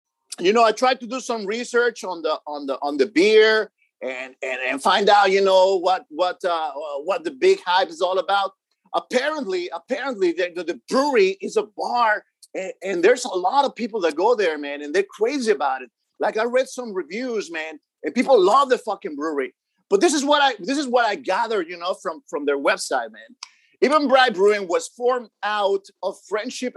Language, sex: English, male